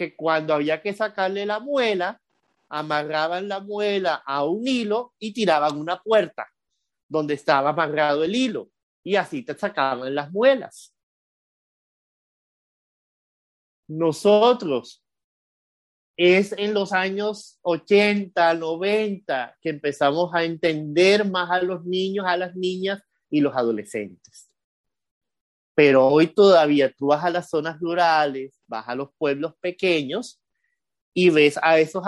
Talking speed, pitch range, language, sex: 125 wpm, 145-205 Hz, Spanish, male